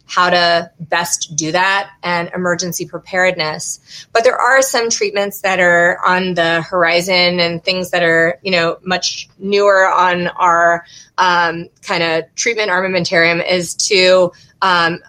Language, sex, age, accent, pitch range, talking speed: English, female, 30-49, American, 165-185 Hz, 140 wpm